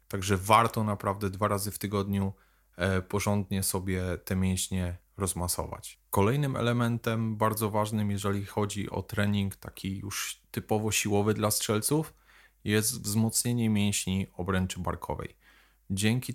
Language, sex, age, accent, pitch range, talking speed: Polish, male, 30-49, native, 100-110 Hz, 115 wpm